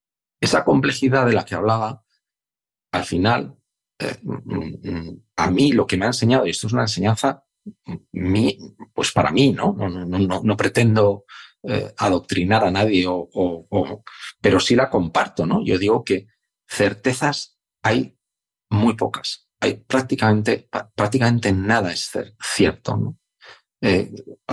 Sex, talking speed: male, 145 wpm